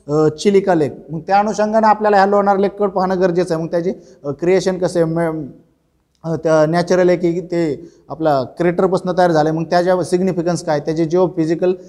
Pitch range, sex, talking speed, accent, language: 175-210 Hz, male, 115 wpm, native, Marathi